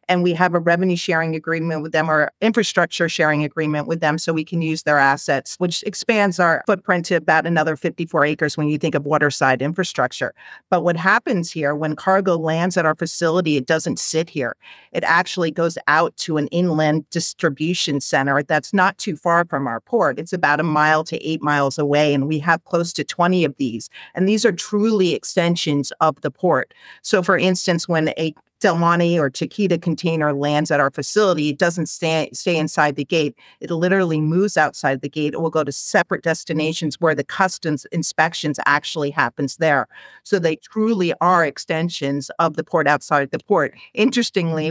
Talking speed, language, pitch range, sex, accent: 190 wpm, English, 150-175 Hz, female, American